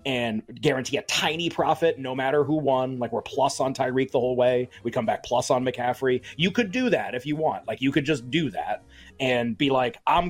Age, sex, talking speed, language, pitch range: 30-49, male, 235 wpm, English, 125-160 Hz